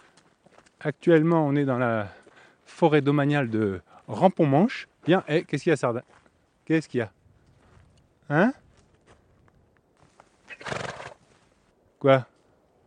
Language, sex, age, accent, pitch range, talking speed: French, male, 30-49, French, 130-165 Hz, 100 wpm